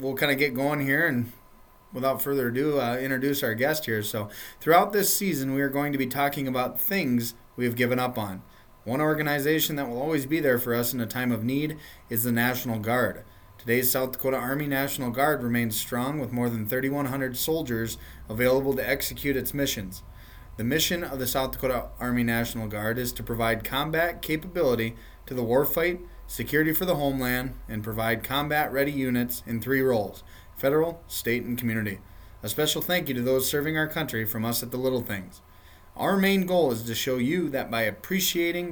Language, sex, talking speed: English, male, 195 wpm